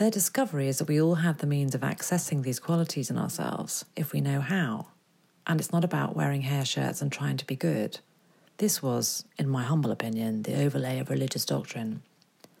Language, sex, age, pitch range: English, female, 40-59, 135-170 Hz